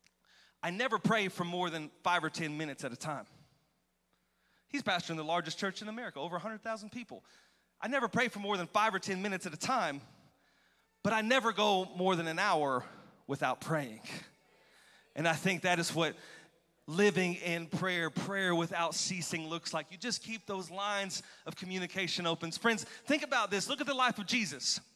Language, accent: English, American